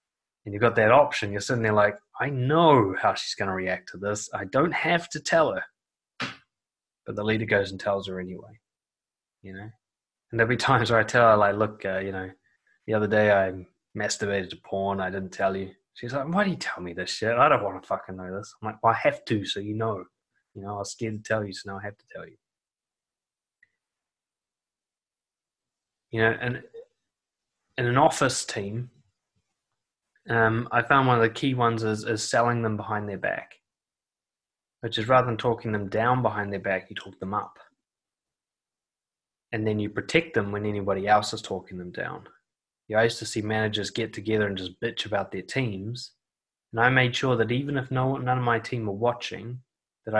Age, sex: 20-39, male